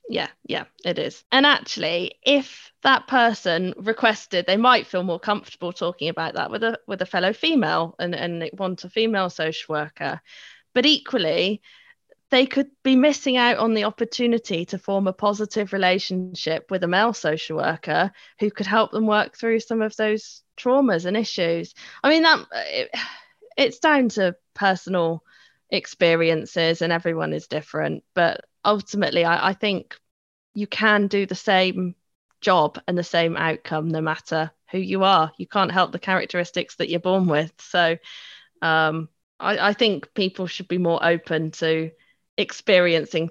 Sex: female